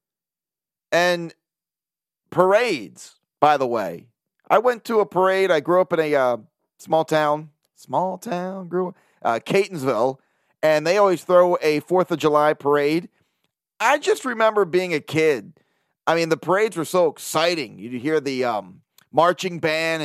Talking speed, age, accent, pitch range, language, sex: 160 wpm, 30-49, American, 155-195 Hz, English, male